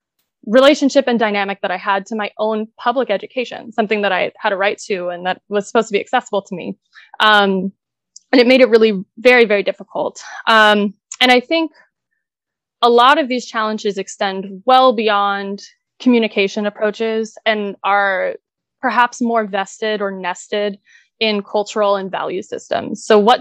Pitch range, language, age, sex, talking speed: 195-240 Hz, English, 20-39, female, 165 wpm